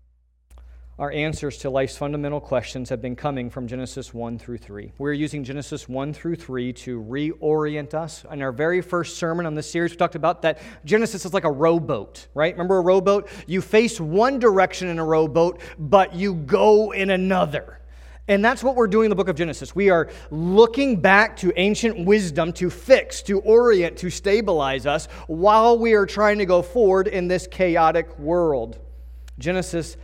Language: English